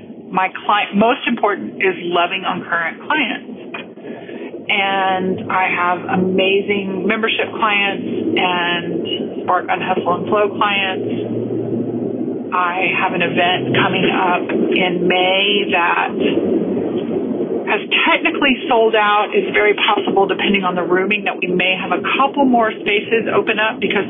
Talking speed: 130 wpm